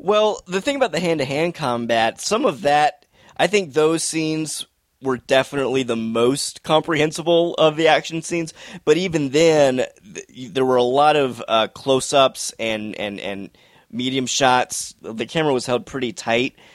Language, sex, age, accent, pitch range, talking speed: English, male, 20-39, American, 115-150 Hz, 160 wpm